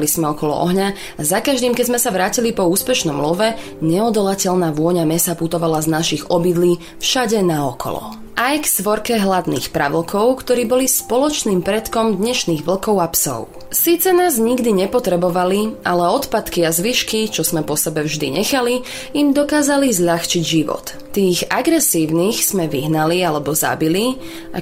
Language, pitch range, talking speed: Slovak, 170-245 Hz, 145 wpm